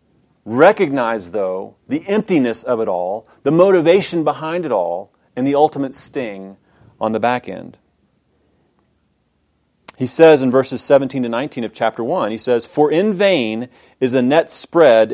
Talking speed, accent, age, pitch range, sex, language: 155 wpm, American, 40-59, 105-150 Hz, male, English